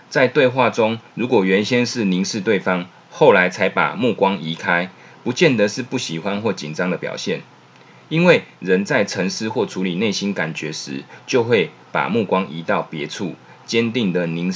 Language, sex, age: Chinese, male, 20-39